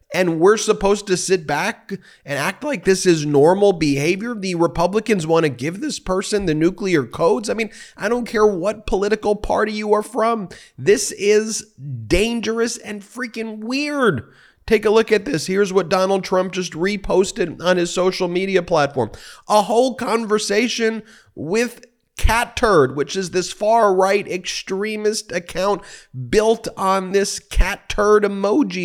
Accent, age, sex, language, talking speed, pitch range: American, 30-49, male, English, 150 wpm, 170-220 Hz